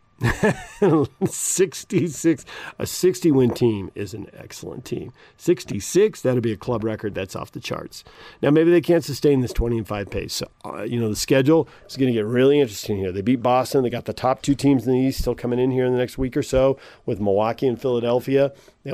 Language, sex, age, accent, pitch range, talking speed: English, male, 50-69, American, 105-140 Hz, 220 wpm